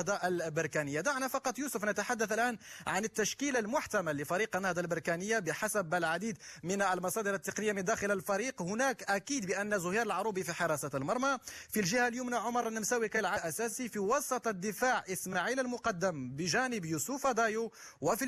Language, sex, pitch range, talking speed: Arabic, male, 185-235 Hz, 140 wpm